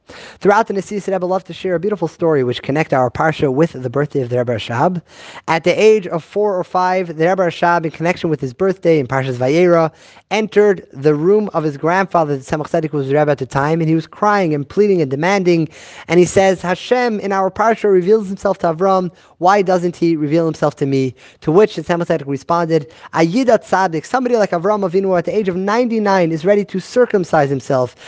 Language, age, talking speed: English, 30-49, 215 wpm